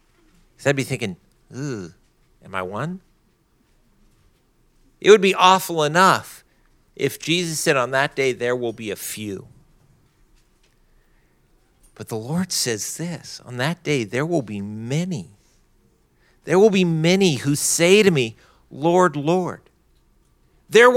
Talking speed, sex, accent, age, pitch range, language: 130 wpm, male, American, 50-69, 135-200 Hz, English